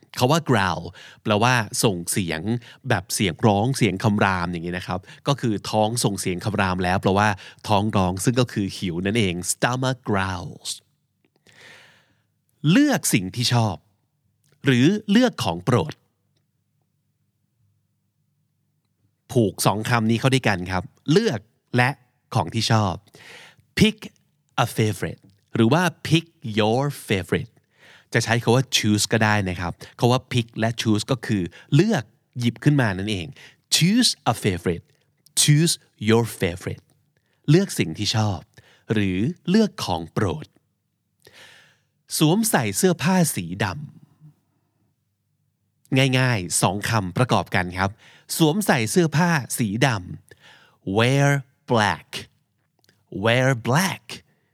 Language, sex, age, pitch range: Thai, male, 30-49, 105-145 Hz